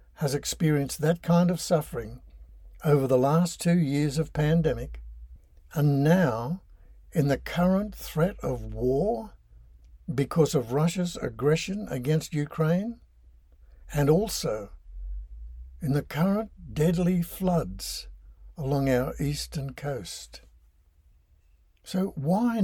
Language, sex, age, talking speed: English, male, 60-79, 105 wpm